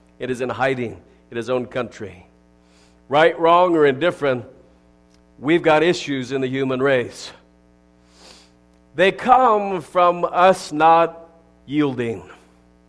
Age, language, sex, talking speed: 50-69, English, male, 115 wpm